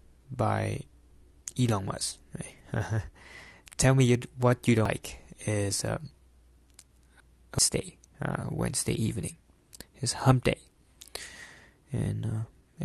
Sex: male